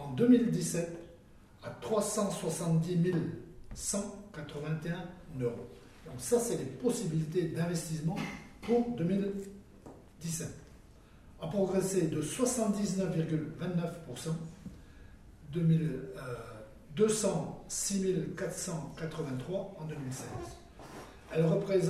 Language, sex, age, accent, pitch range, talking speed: French, male, 60-79, French, 145-190 Hz, 60 wpm